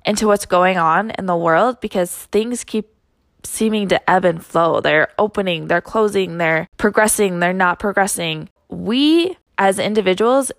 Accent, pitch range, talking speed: American, 185-250 Hz, 155 wpm